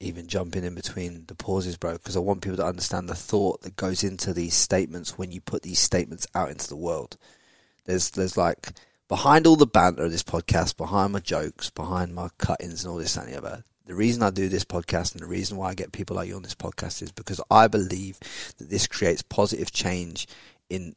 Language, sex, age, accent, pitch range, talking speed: English, male, 30-49, British, 90-105 Hz, 220 wpm